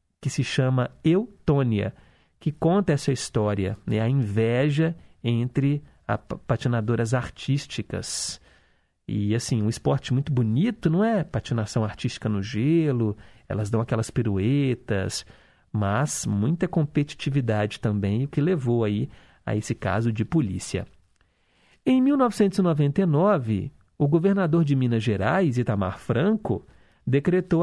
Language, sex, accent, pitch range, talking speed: Portuguese, male, Brazilian, 110-165 Hz, 115 wpm